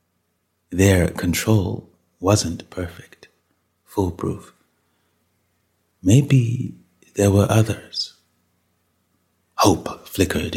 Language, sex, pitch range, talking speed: English, male, 85-100 Hz, 60 wpm